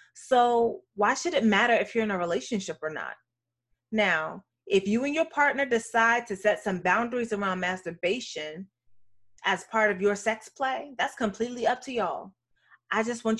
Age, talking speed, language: 30-49, 175 wpm, English